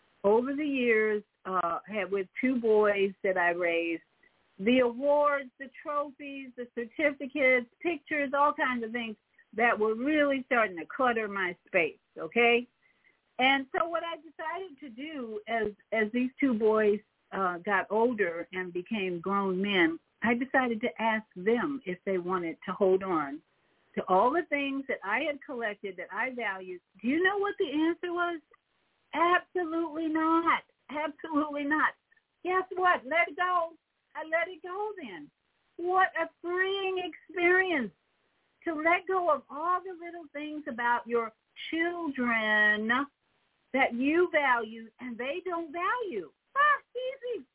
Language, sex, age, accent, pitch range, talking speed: English, female, 50-69, American, 215-330 Hz, 150 wpm